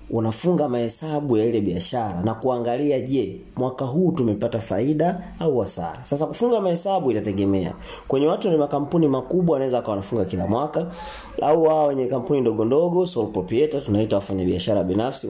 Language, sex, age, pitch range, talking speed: Swahili, male, 30-49, 105-150 Hz, 155 wpm